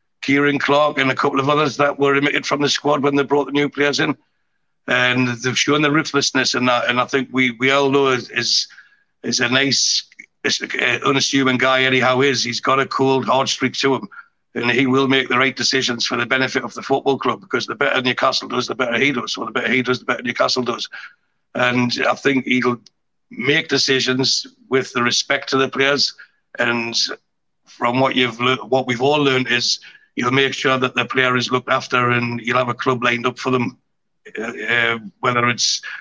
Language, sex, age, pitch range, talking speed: English, male, 60-79, 125-135 Hz, 215 wpm